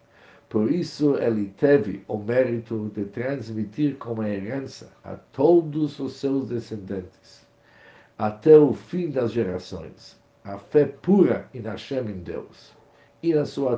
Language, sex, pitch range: Portuguese, male, 105-135 Hz